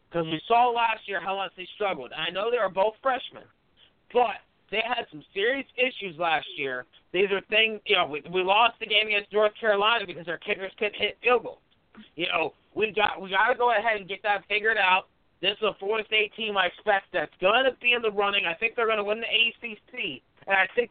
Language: English